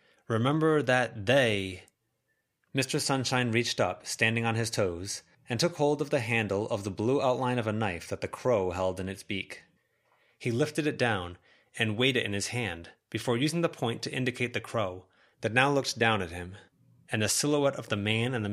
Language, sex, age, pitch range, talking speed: English, male, 30-49, 105-130 Hz, 205 wpm